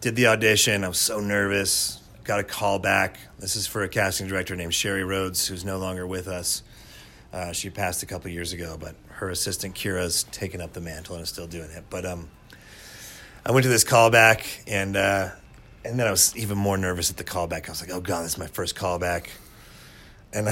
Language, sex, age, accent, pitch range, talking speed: English, male, 30-49, American, 95-115 Hz, 215 wpm